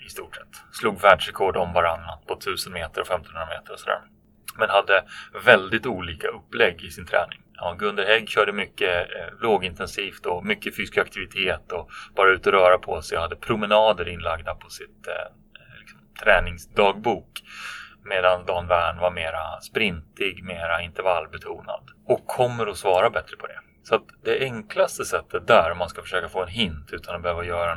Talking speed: 175 wpm